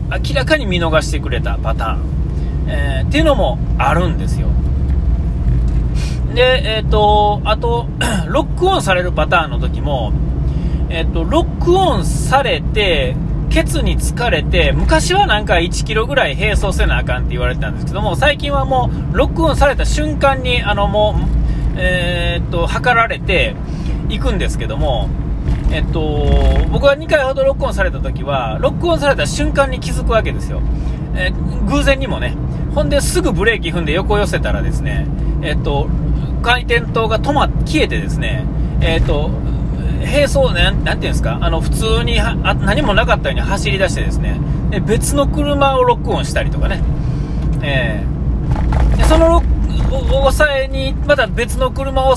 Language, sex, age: Japanese, male, 40-59